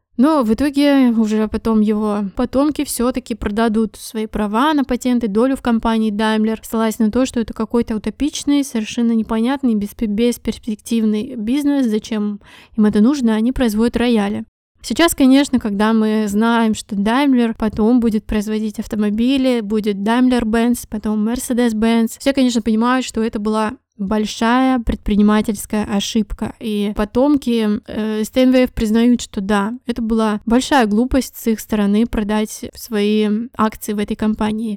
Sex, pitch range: female, 215-245 Hz